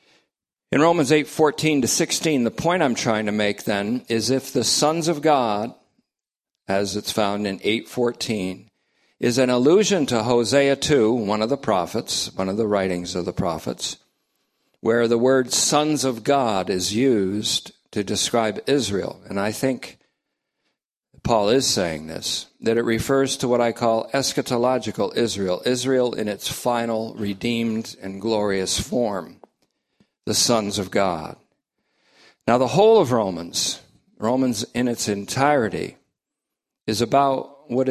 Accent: American